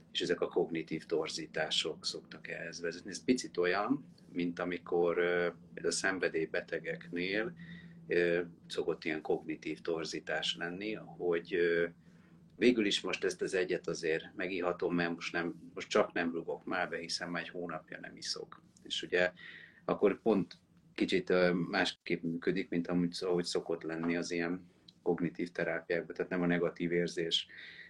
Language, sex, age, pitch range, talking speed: Hungarian, male, 30-49, 85-95 Hz, 140 wpm